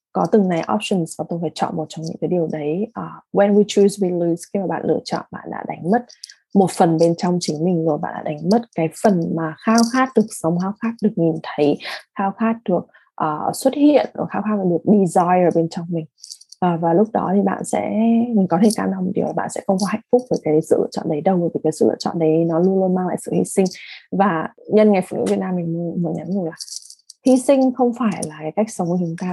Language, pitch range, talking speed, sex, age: English, 165-215 Hz, 270 wpm, female, 20-39